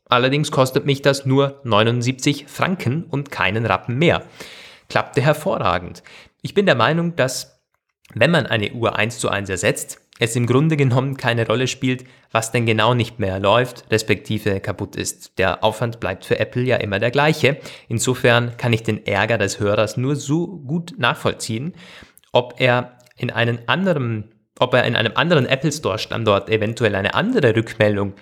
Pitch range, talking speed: 105-135 Hz, 165 wpm